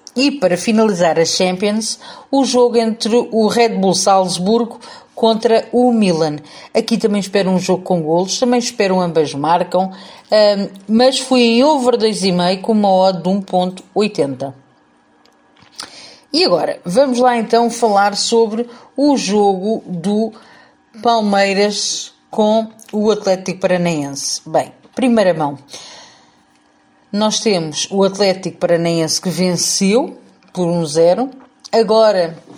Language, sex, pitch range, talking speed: Portuguese, female, 180-225 Hz, 120 wpm